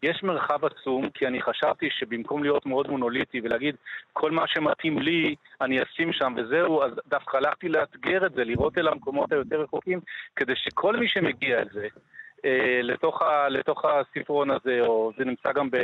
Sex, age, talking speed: male, 40-59, 160 wpm